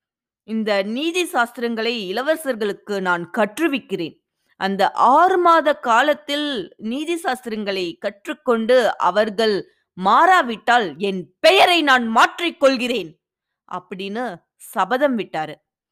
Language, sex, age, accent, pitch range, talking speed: Tamil, female, 20-39, native, 195-270 Hz, 85 wpm